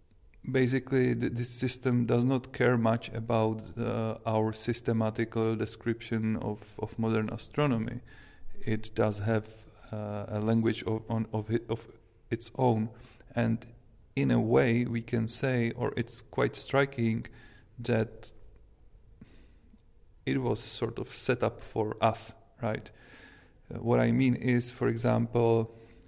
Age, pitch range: 40-59, 110-120 Hz